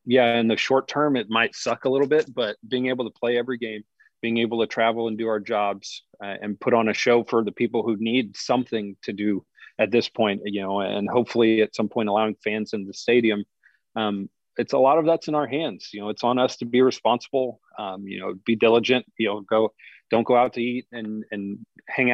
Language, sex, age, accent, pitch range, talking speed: English, male, 40-59, American, 110-125 Hz, 240 wpm